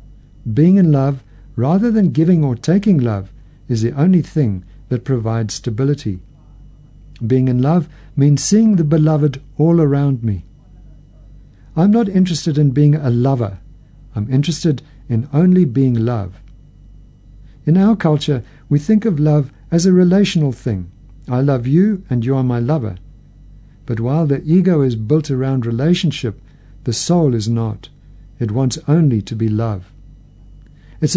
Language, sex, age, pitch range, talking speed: English, male, 60-79, 120-160 Hz, 150 wpm